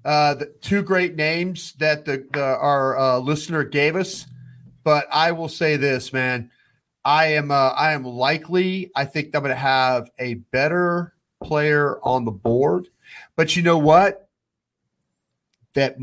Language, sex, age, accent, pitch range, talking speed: English, male, 40-59, American, 130-160 Hz, 155 wpm